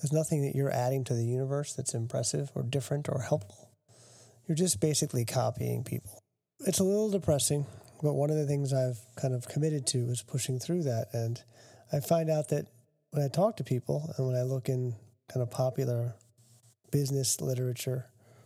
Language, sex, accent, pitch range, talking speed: English, male, American, 120-150 Hz, 185 wpm